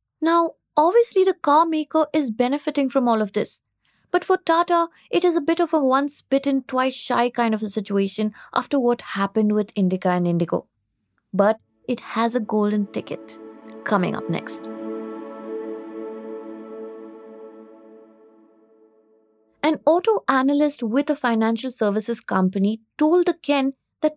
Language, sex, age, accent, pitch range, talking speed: English, female, 20-39, Indian, 205-290 Hz, 135 wpm